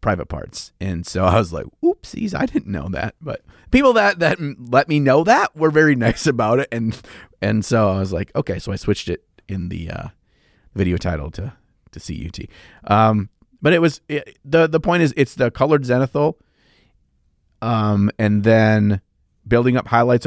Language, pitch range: English, 95-120 Hz